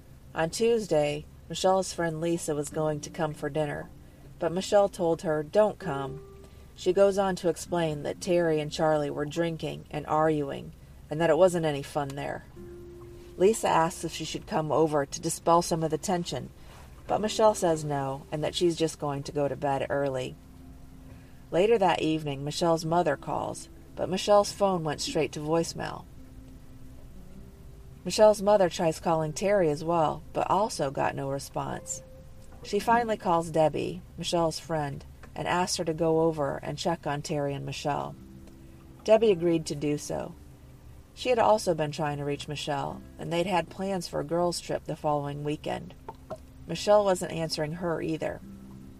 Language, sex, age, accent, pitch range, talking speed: English, female, 40-59, American, 140-170 Hz, 165 wpm